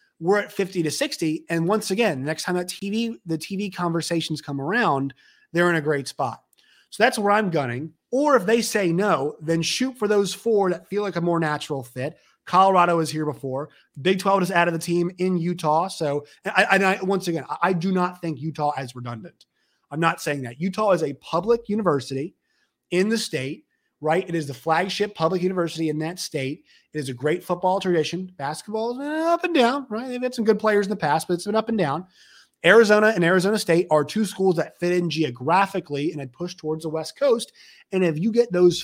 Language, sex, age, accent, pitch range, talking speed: English, male, 30-49, American, 150-195 Hz, 220 wpm